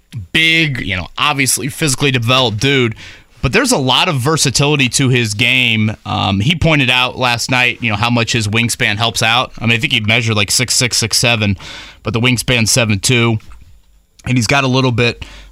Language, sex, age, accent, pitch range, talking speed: English, male, 20-39, American, 110-135 Hz, 200 wpm